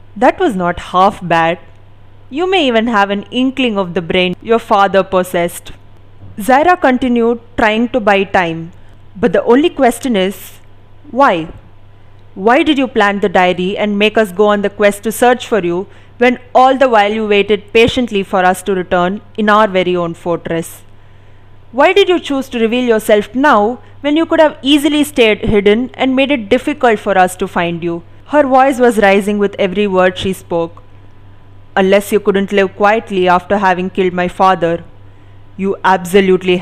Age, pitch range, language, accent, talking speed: 20-39, 170-225 Hz, English, Indian, 175 wpm